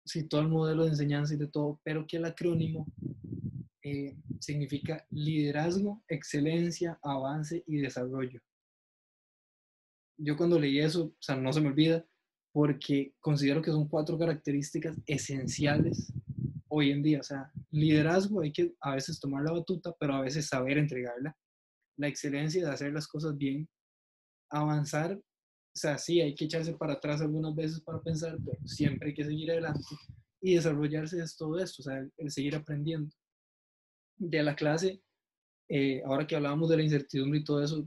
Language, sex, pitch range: Spanish, male, 140-160 Hz